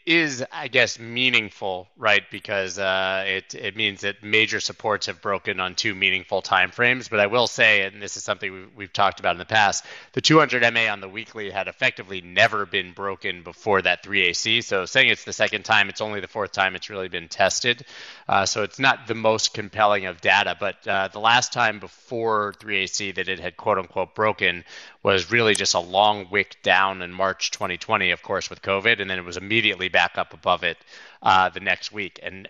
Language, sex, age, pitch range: English, male, 30-49, 95-115 Hz